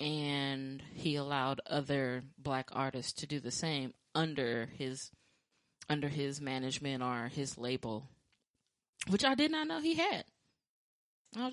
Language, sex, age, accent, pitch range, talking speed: English, female, 20-39, American, 135-160 Hz, 140 wpm